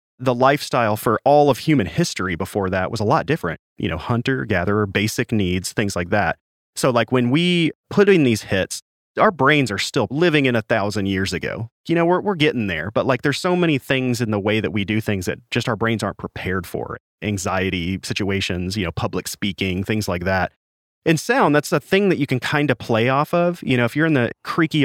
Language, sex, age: English, male, 30-49